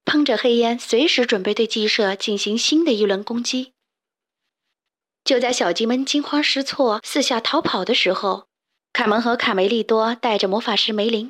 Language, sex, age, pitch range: Chinese, female, 20-39, 220-280 Hz